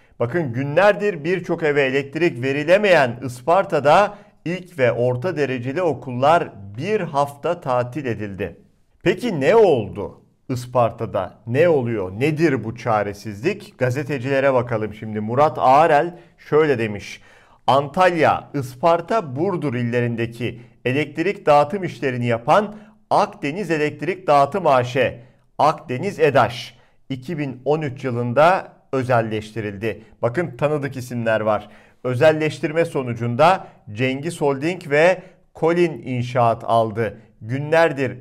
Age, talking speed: 50-69, 95 wpm